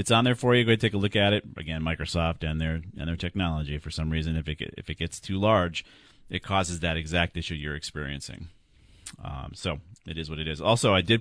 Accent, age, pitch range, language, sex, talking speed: American, 40-59, 80-100 Hz, English, male, 240 wpm